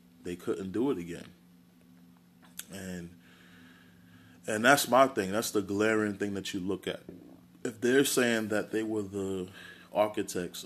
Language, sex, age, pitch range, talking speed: English, male, 20-39, 85-100 Hz, 145 wpm